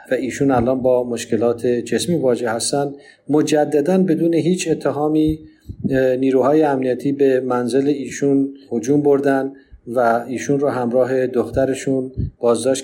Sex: male